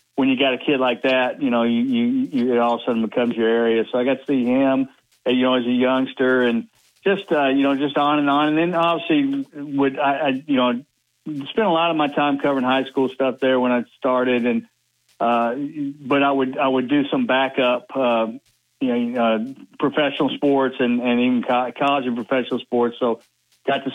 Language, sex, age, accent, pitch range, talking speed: English, male, 50-69, American, 120-140 Hz, 220 wpm